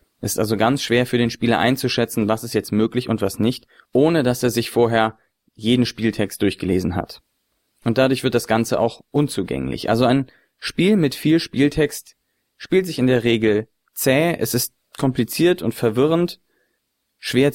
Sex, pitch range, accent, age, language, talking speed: male, 115-140 Hz, German, 30-49, German, 170 wpm